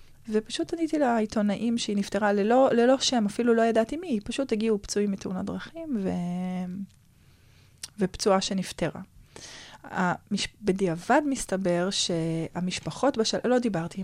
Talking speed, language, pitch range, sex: 115 wpm, Hebrew, 185-225 Hz, female